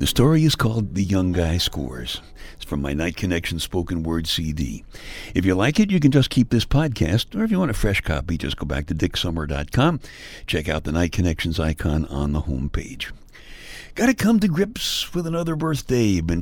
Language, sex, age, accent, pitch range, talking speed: English, male, 60-79, American, 85-140 Hz, 205 wpm